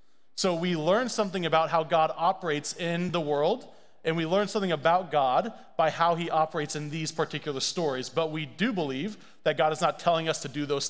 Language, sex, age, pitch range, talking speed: English, male, 30-49, 140-170 Hz, 210 wpm